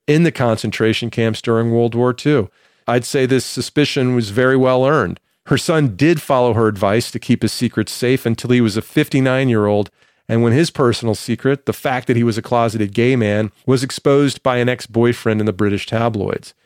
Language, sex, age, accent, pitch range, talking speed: English, male, 40-59, American, 115-140 Hz, 200 wpm